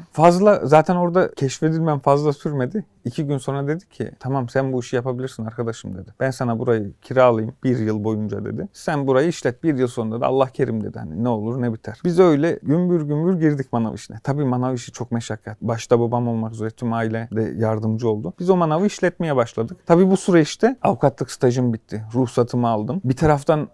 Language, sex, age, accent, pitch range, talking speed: Turkish, male, 40-59, native, 120-155 Hz, 195 wpm